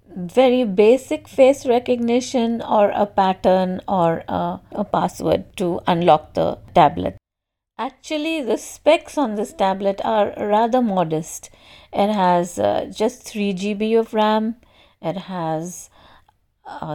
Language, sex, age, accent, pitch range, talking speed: English, female, 50-69, Indian, 175-230 Hz, 120 wpm